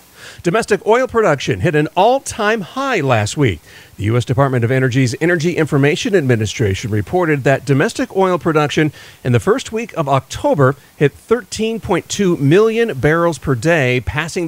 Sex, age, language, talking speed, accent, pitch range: male, 40-59, English, 150 wpm, American, 125-170 Hz